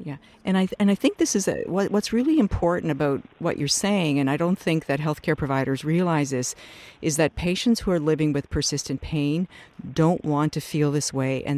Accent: American